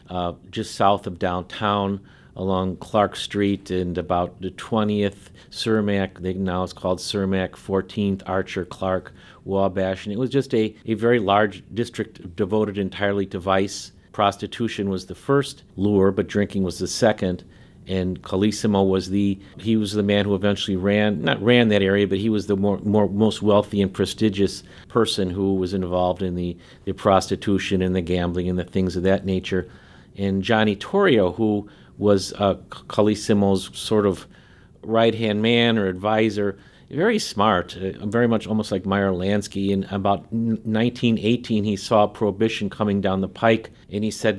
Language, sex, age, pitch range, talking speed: English, male, 50-69, 95-110 Hz, 165 wpm